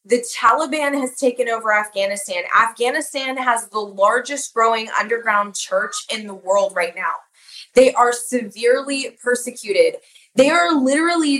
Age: 20-39